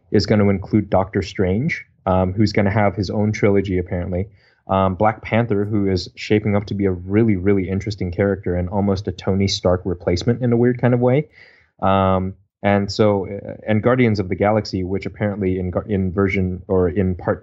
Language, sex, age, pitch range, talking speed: English, male, 20-39, 95-110 Hz, 195 wpm